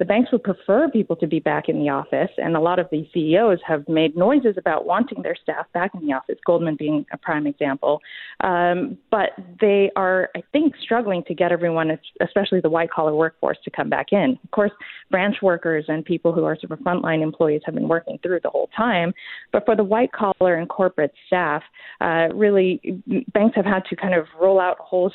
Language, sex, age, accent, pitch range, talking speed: English, female, 30-49, American, 155-200 Hz, 215 wpm